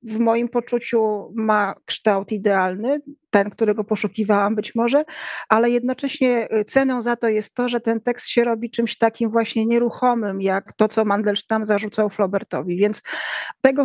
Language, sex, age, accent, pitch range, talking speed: Polish, female, 40-59, native, 210-235 Hz, 150 wpm